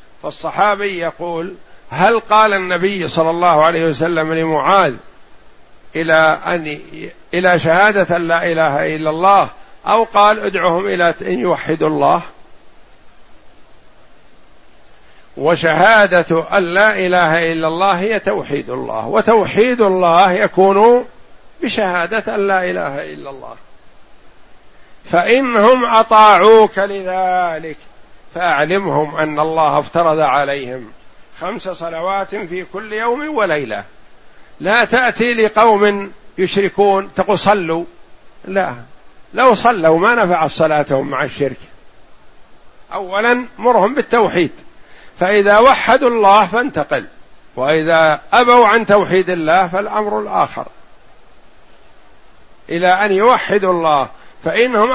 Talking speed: 95 wpm